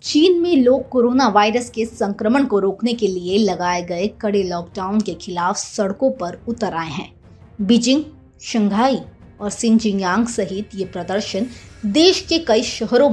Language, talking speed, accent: Hindi, 150 wpm, native